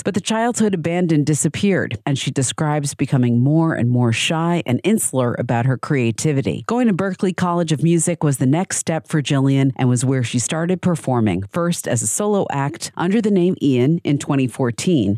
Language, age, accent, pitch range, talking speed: English, 50-69, American, 130-175 Hz, 185 wpm